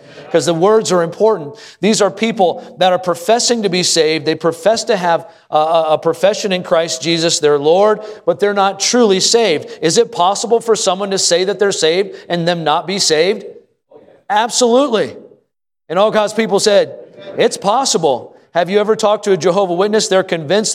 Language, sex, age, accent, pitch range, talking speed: English, male, 40-59, American, 160-200 Hz, 190 wpm